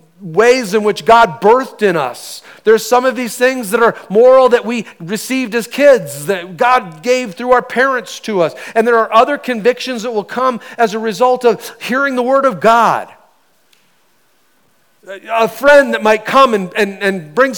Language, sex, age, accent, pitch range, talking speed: English, male, 40-59, American, 190-250 Hz, 185 wpm